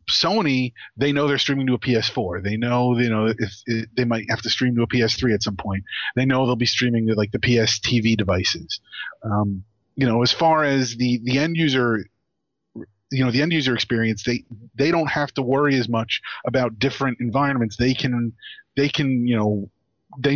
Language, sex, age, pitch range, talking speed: English, male, 30-49, 115-140 Hz, 205 wpm